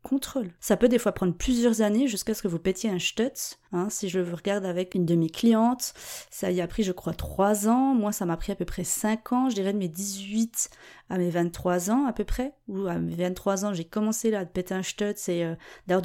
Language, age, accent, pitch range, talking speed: French, 30-49, French, 180-235 Hz, 245 wpm